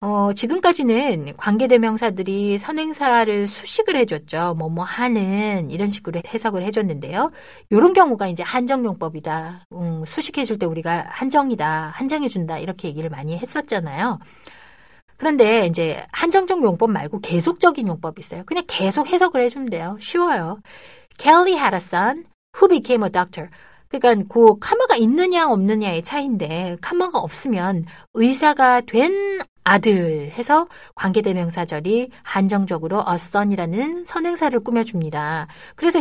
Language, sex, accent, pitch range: Korean, female, native, 175-265 Hz